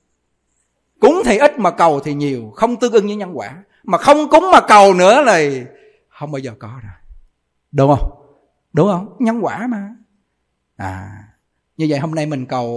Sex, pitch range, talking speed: male, 130-215 Hz, 185 wpm